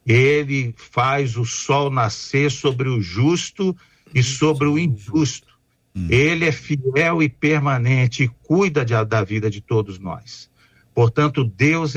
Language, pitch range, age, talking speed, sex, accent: Portuguese, 110-150 Hz, 50-69, 130 wpm, male, Brazilian